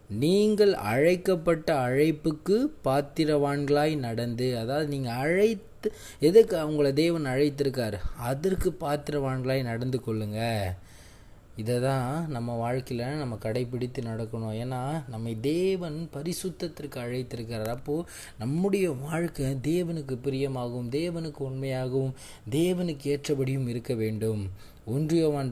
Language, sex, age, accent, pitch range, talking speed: Tamil, male, 20-39, native, 115-150 Hz, 95 wpm